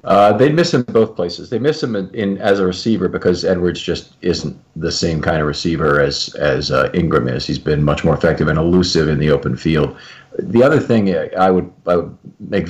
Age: 40-59